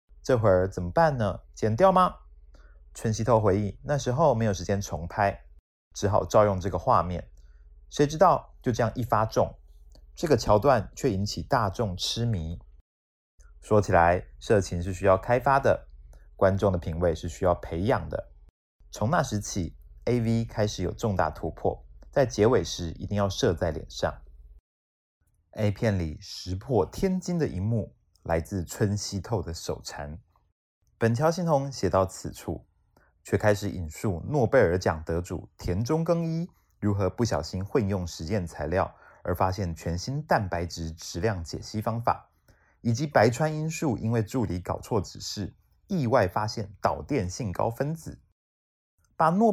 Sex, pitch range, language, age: male, 80-115 Hz, Chinese, 30-49